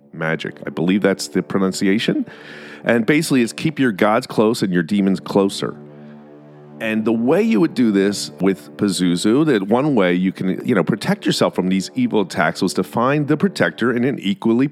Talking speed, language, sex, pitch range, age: 190 wpm, English, male, 90-125 Hz, 40-59